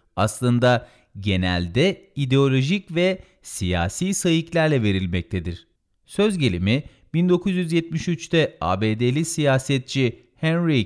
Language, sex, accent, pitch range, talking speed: Turkish, male, native, 105-160 Hz, 70 wpm